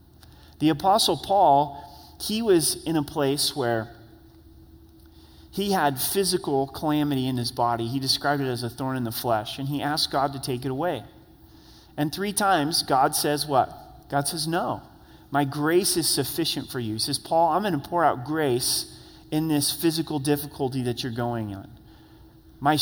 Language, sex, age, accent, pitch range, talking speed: English, male, 30-49, American, 130-170 Hz, 170 wpm